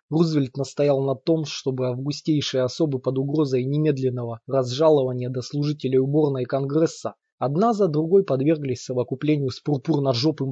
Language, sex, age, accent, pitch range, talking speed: Russian, male, 20-39, native, 135-165 Hz, 125 wpm